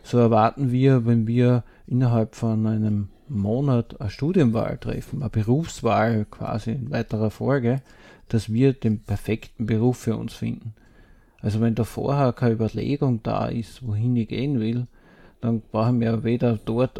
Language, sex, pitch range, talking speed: German, male, 110-125 Hz, 150 wpm